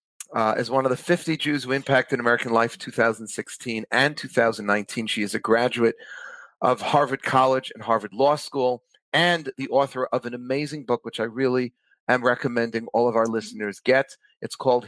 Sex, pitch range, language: male, 110-135 Hz, English